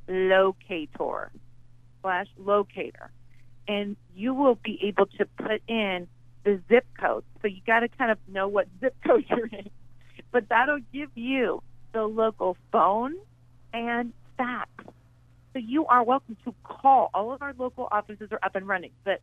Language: English